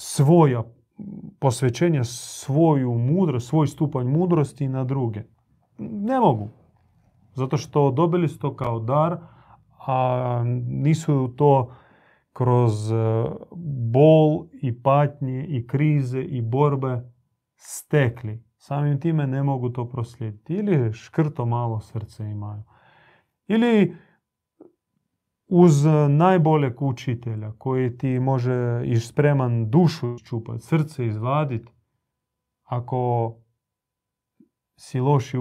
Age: 30-49